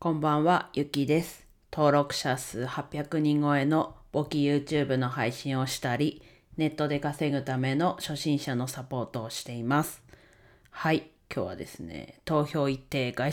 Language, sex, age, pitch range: Japanese, female, 40-59, 130-165 Hz